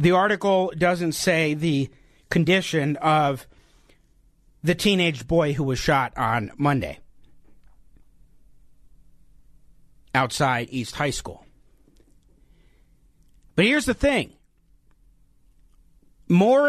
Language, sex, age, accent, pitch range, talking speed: English, male, 50-69, American, 165-235 Hz, 85 wpm